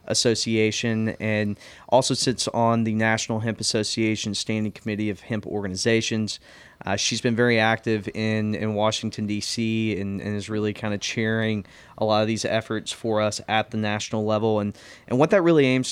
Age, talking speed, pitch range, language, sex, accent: 20-39, 175 wpm, 105-120 Hz, English, male, American